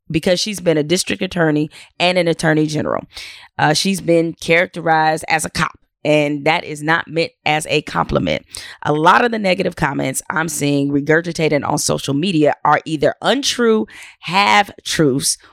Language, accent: English, American